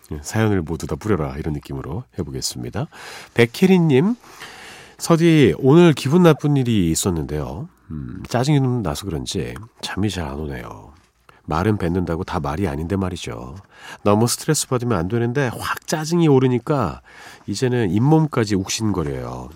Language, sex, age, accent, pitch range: Korean, male, 40-59, native, 90-140 Hz